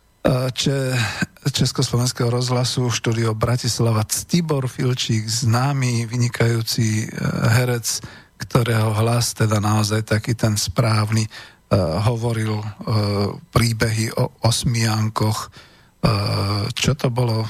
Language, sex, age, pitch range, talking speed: Slovak, male, 40-59, 110-135 Hz, 80 wpm